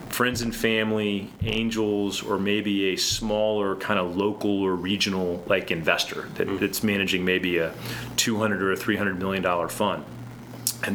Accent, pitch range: American, 95-110 Hz